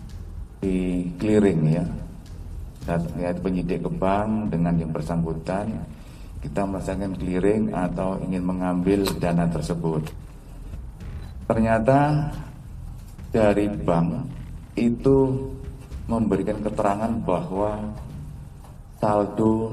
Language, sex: Indonesian, male